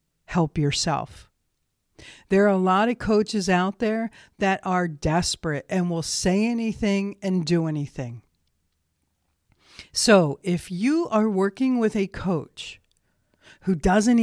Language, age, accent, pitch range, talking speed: English, 50-69, American, 155-195 Hz, 125 wpm